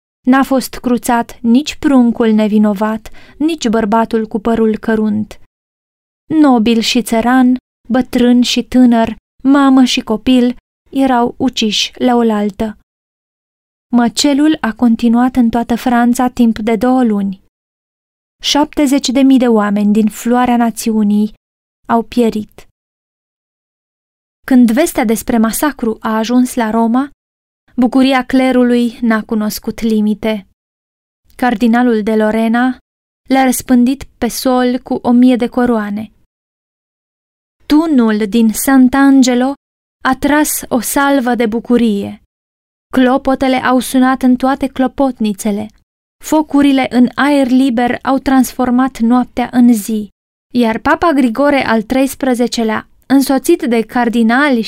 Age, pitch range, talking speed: 20-39, 225-260 Hz, 110 wpm